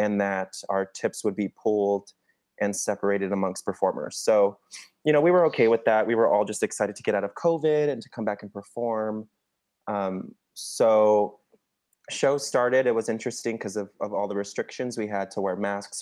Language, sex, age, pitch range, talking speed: English, male, 20-39, 100-115 Hz, 200 wpm